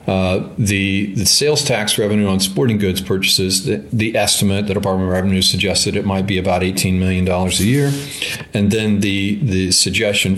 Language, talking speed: English, 180 wpm